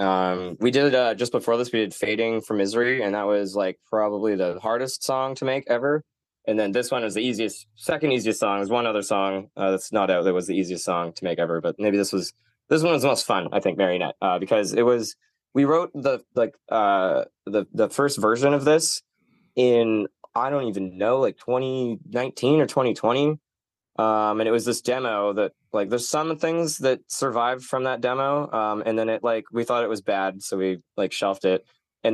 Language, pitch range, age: English, 100-130 Hz, 20-39